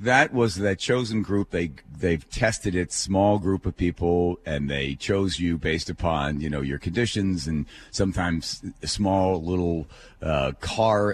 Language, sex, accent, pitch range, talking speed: English, male, American, 80-110 Hz, 165 wpm